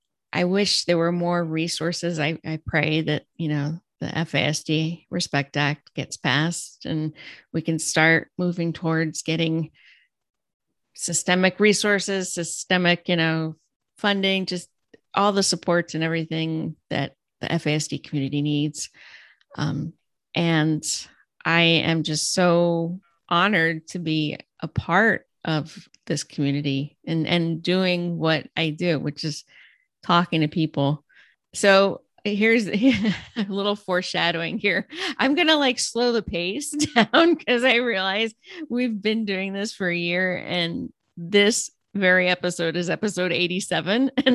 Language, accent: English, American